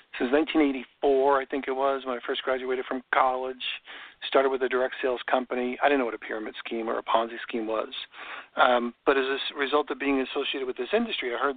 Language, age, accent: English, 50-69, American